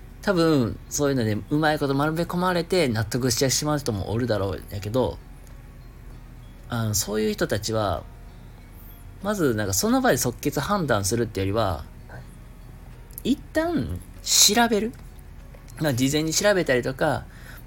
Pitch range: 95-150 Hz